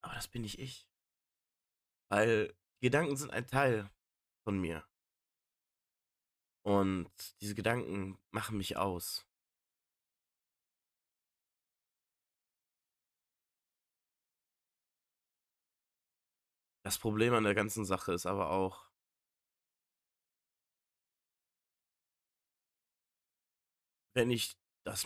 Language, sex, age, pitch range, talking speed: German, male, 40-59, 85-110 Hz, 70 wpm